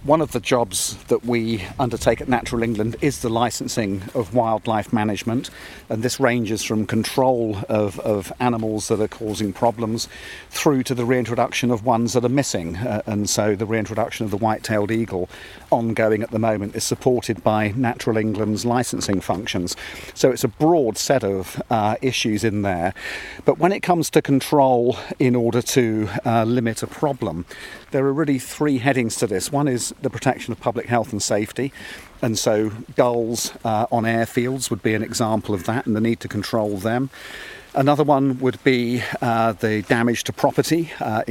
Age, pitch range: 50-69, 110-125 Hz